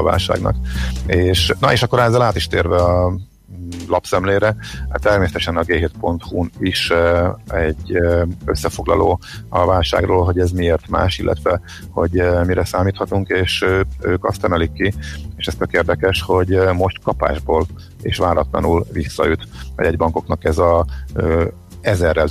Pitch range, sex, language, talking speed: 85-95 Hz, male, Hungarian, 130 wpm